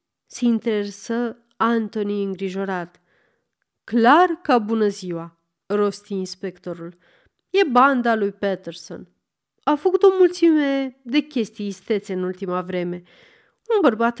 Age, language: 30-49, Romanian